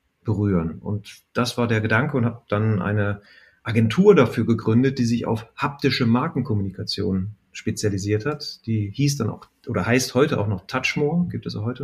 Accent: German